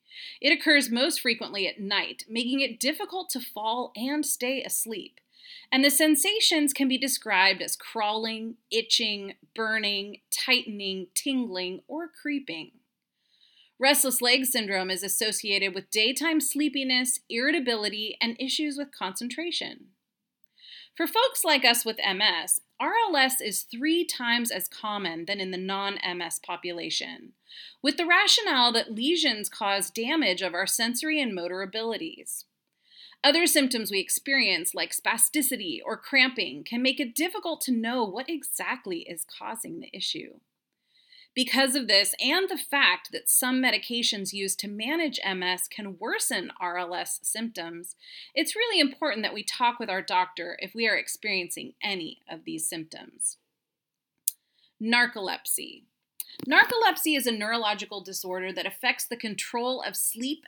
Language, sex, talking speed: English, female, 135 wpm